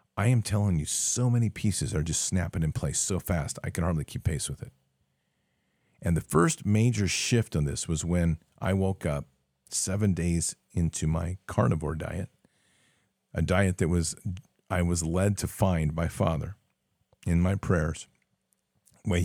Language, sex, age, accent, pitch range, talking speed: English, male, 40-59, American, 80-95 Hz, 170 wpm